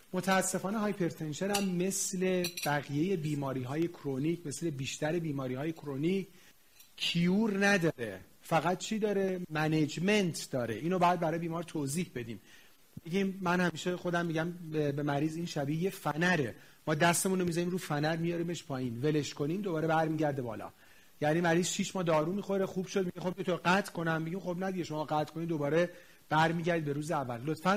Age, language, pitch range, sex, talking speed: 40-59, Persian, 150-185 Hz, male, 155 wpm